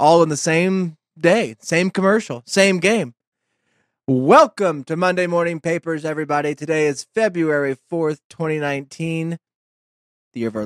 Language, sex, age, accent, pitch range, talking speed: English, male, 20-39, American, 140-170 Hz, 135 wpm